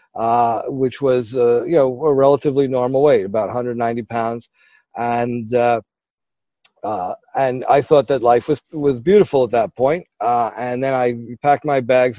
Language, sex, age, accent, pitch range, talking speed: English, male, 40-59, American, 115-140 Hz, 165 wpm